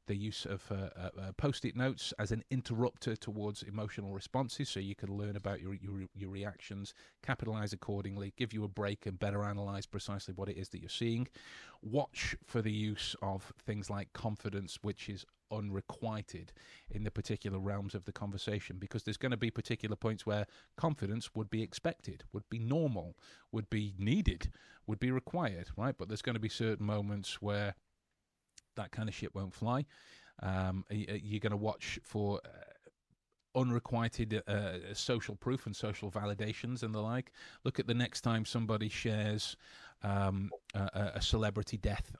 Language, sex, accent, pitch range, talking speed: English, male, British, 100-115 Hz, 170 wpm